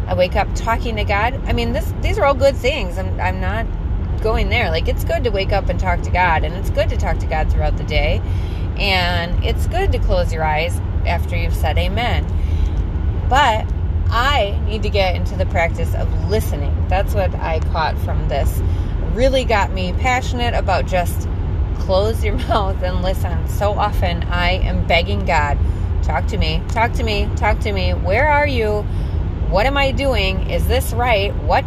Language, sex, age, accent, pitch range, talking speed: English, female, 30-49, American, 85-95 Hz, 195 wpm